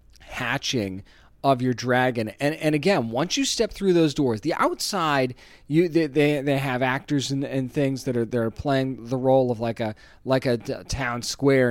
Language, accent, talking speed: English, American, 190 wpm